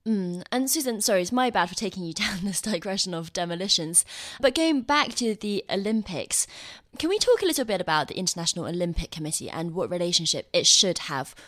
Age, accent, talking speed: 20-39, British, 200 wpm